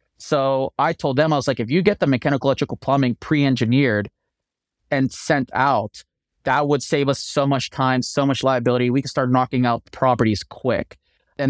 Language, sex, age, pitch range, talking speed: English, male, 20-39, 125-150 Hz, 190 wpm